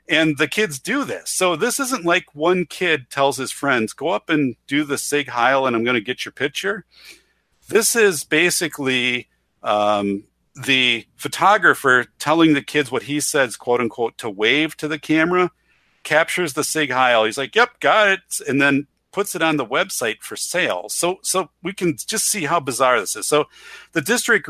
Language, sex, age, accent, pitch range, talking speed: English, male, 50-69, American, 120-165 Hz, 190 wpm